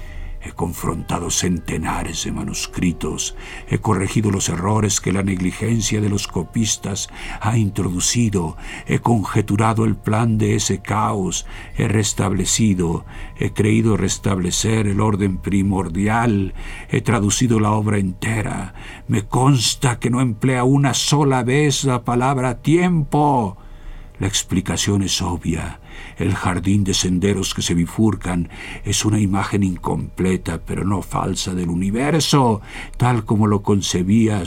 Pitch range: 95-130 Hz